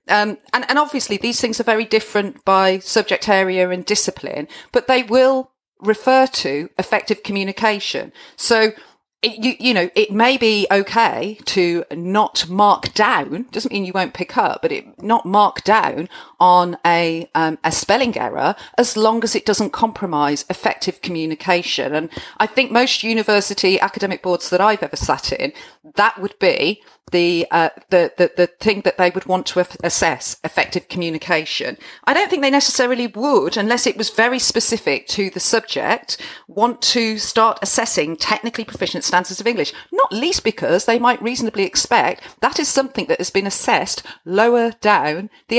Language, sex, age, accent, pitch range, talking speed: English, female, 40-59, British, 180-235 Hz, 170 wpm